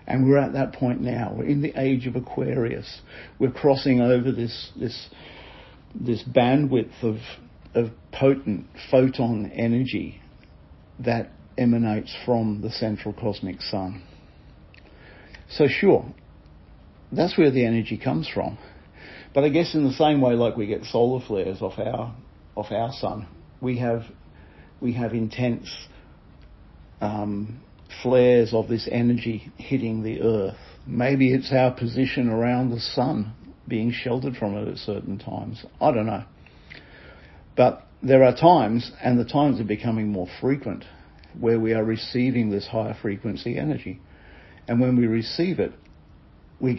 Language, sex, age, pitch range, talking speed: English, male, 50-69, 105-130 Hz, 145 wpm